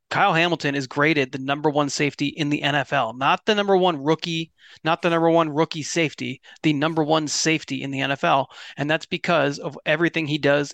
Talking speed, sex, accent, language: 200 wpm, male, American, English